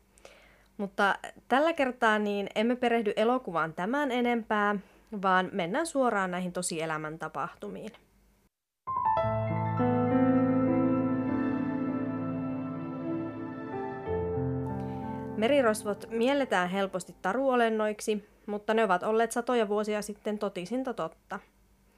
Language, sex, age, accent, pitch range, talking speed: Finnish, female, 30-49, native, 180-230 Hz, 75 wpm